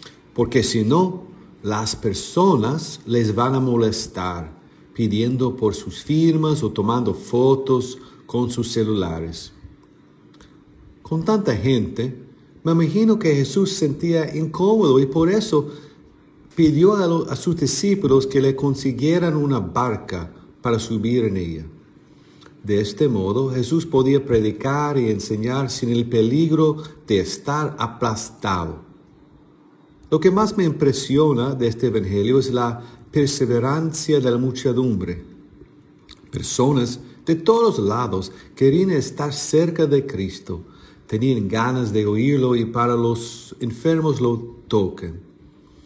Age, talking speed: 50-69, 120 wpm